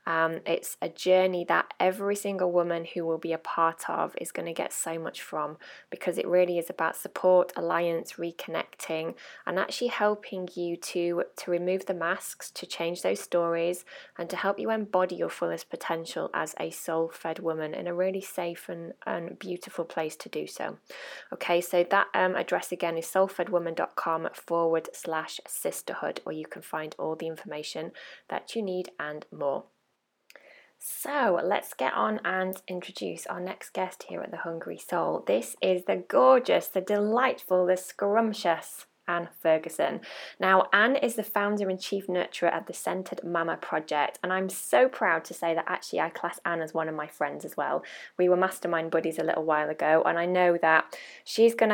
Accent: British